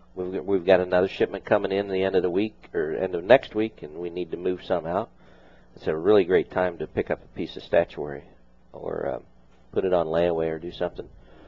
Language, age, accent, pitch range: English, 50-69, American, 80-105 Hz